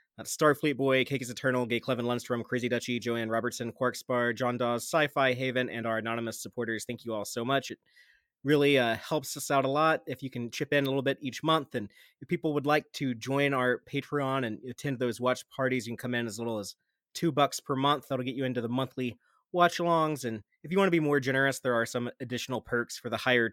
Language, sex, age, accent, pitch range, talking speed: English, male, 30-49, American, 120-145 Hz, 235 wpm